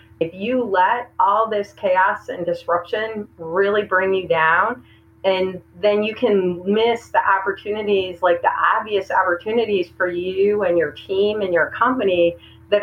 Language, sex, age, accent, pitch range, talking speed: English, female, 40-59, American, 170-210 Hz, 150 wpm